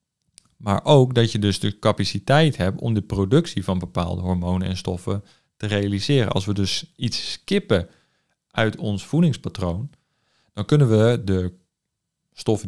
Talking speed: 145 wpm